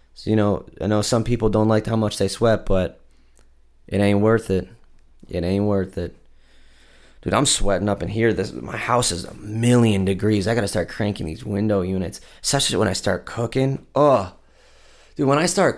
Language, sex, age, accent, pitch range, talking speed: English, male, 20-39, American, 90-120 Hz, 195 wpm